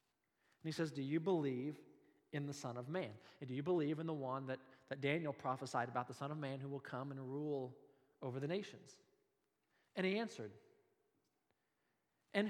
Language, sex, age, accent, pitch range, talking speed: English, male, 40-59, American, 125-180 Hz, 185 wpm